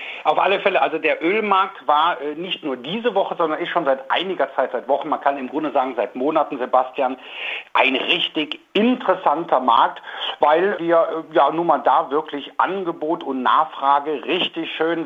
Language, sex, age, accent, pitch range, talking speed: German, male, 60-79, German, 145-185 Hz, 180 wpm